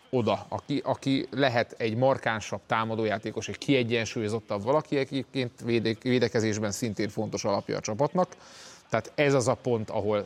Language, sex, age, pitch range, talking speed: Hungarian, male, 30-49, 105-135 Hz, 135 wpm